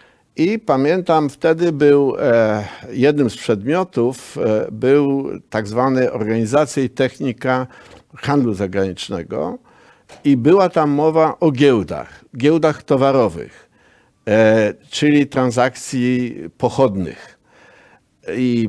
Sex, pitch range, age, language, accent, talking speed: male, 115-150 Hz, 50-69, Polish, native, 85 wpm